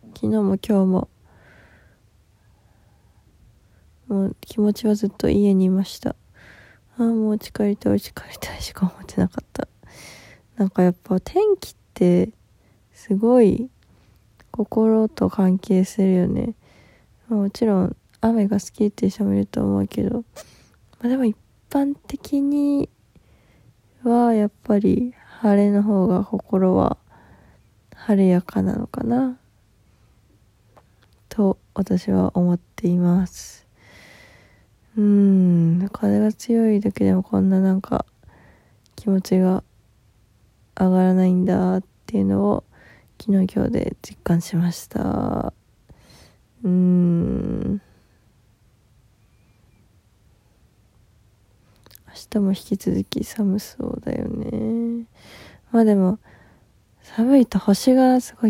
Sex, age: female, 20-39